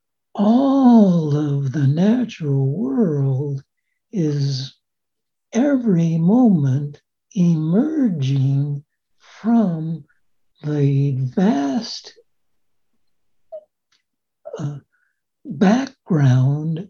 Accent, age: American, 60-79